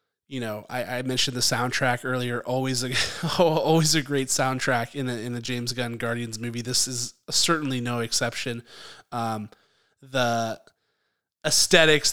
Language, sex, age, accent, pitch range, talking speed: English, male, 20-39, American, 120-150 Hz, 155 wpm